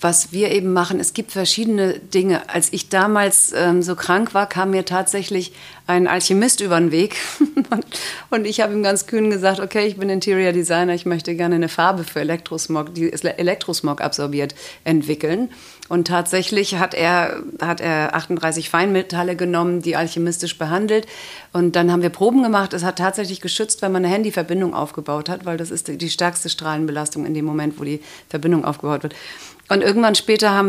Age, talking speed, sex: 40-59, 185 wpm, female